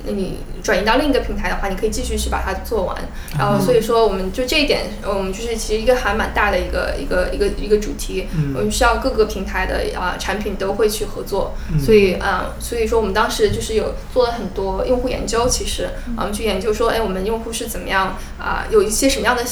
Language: Chinese